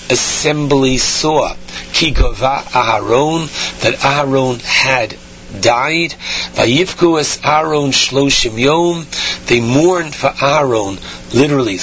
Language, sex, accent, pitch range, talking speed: English, male, American, 125-150 Hz, 65 wpm